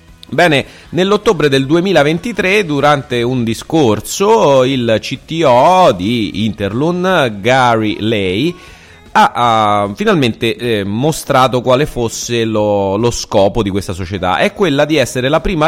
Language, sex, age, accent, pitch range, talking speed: Italian, male, 30-49, native, 105-155 Hz, 125 wpm